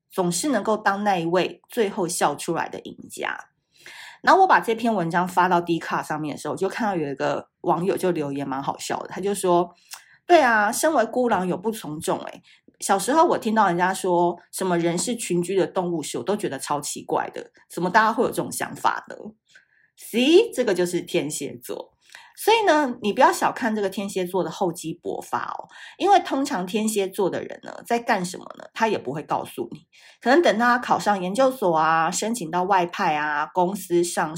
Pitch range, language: 170-235 Hz, Chinese